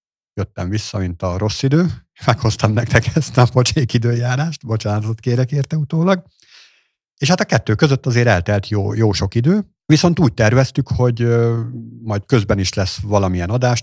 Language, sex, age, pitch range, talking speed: Hungarian, male, 50-69, 95-120 Hz, 155 wpm